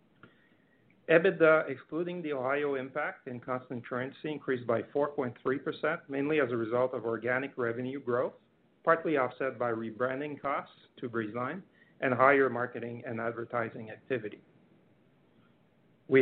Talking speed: 120 wpm